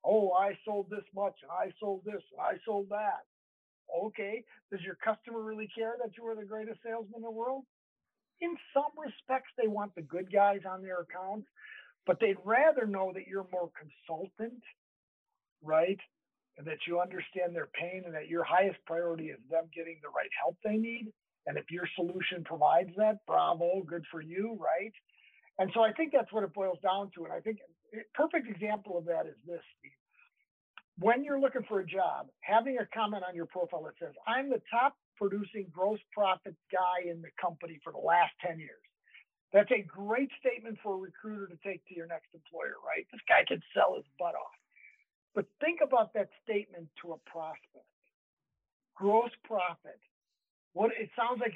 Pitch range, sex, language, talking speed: 175-225 Hz, male, English, 185 wpm